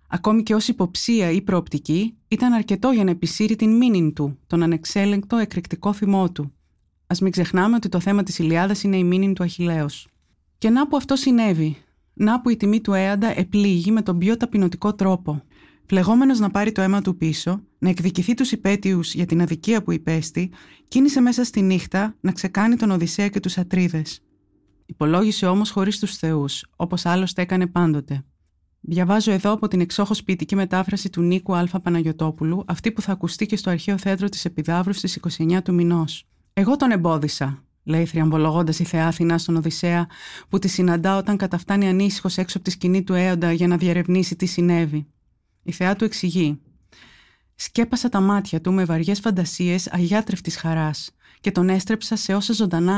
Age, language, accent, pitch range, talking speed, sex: 20-39, Greek, native, 170-205 Hz, 175 wpm, female